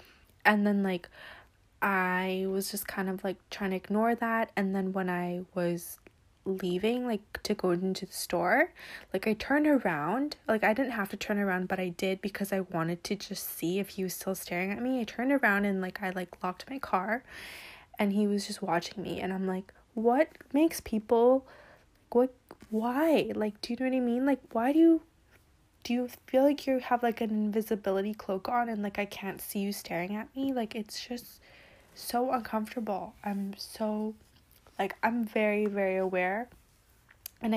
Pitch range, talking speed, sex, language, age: 190-235 Hz, 190 wpm, female, English, 20-39